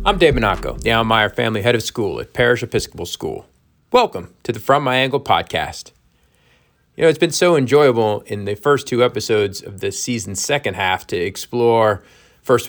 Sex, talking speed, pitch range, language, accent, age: male, 185 wpm, 100-125 Hz, English, American, 40-59